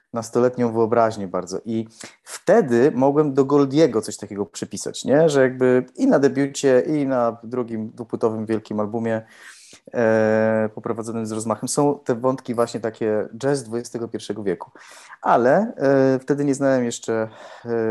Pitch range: 110-135 Hz